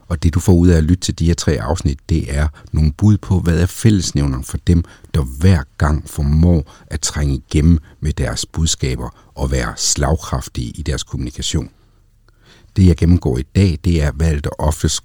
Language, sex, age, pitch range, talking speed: Danish, male, 60-79, 75-95 Hz, 195 wpm